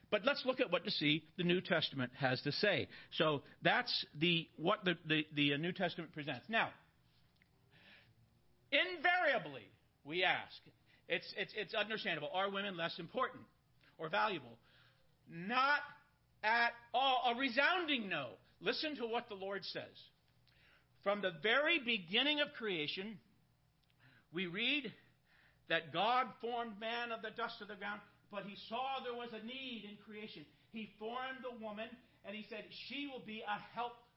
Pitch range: 185-255 Hz